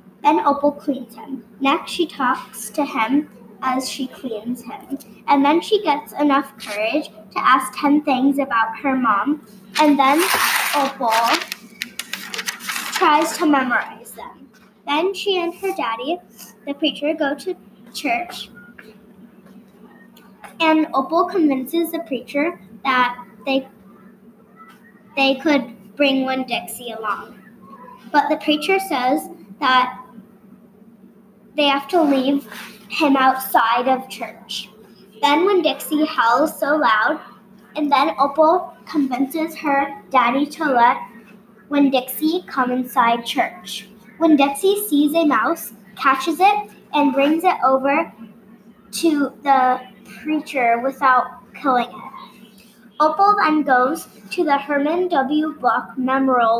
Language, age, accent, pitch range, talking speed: English, 10-29, American, 220-295 Hz, 120 wpm